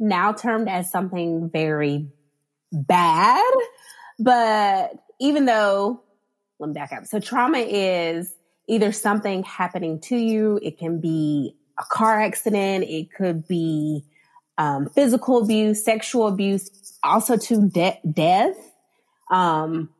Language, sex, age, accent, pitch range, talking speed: English, female, 20-39, American, 165-225 Hz, 120 wpm